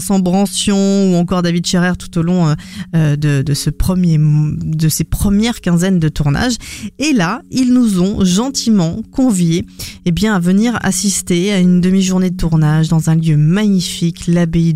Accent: French